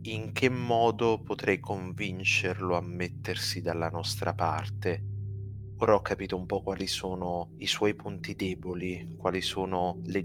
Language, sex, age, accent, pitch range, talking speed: Italian, male, 30-49, native, 90-100 Hz, 140 wpm